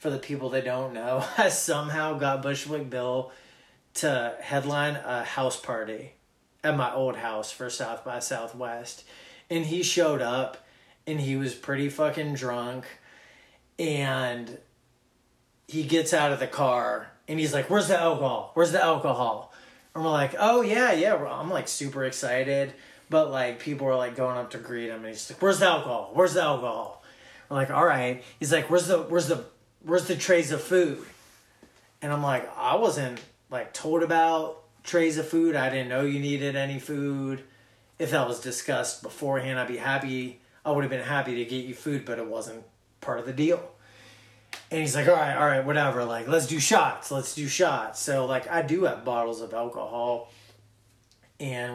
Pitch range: 125-155 Hz